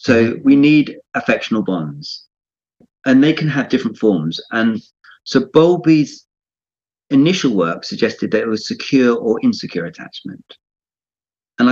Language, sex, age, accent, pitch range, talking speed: English, male, 40-59, British, 95-135 Hz, 130 wpm